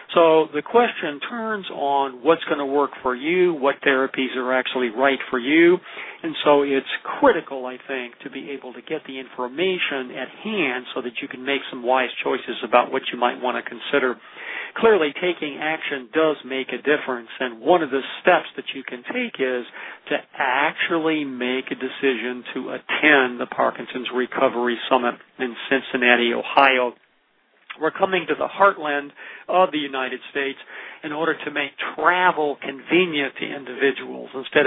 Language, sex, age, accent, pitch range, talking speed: English, male, 50-69, American, 130-155 Hz, 170 wpm